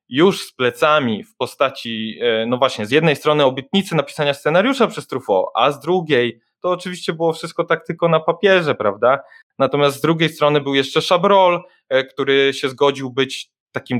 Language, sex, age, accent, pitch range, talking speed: Polish, male, 20-39, native, 125-160 Hz, 165 wpm